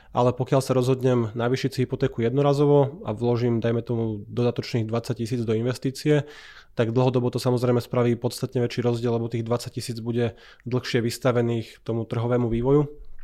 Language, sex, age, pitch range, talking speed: Slovak, male, 20-39, 120-130 Hz, 155 wpm